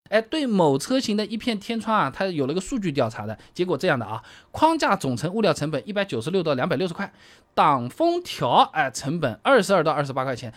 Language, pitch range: Chinese, 140-230 Hz